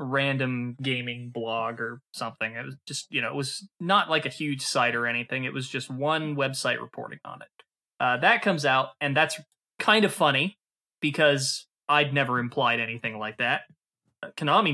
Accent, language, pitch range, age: American, English, 125-155 Hz, 20-39